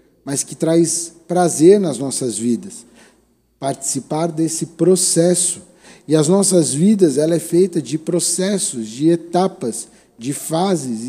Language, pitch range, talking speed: Portuguese, 140-175 Hz, 125 wpm